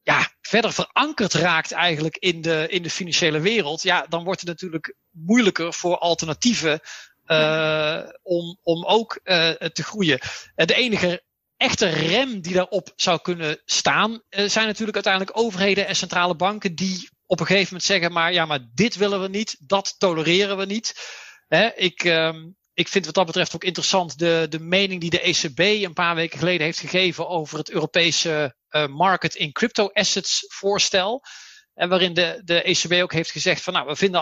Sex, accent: male, Dutch